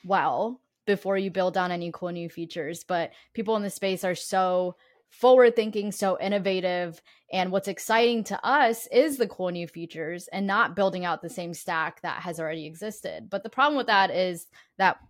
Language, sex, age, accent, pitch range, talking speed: English, female, 10-29, American, 175-205 Hz, 185 wpm